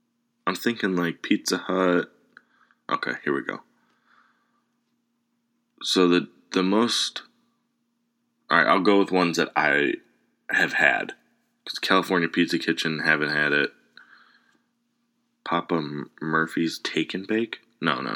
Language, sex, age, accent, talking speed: English, male, 20-39, American, 120 wpm